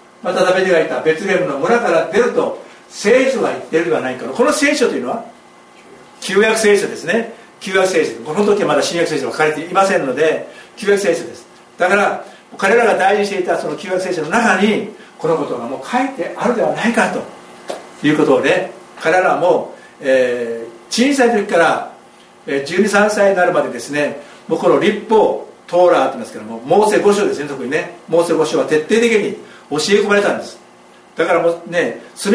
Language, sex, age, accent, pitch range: Japanese, male, 60-79, native, 145-210 Hz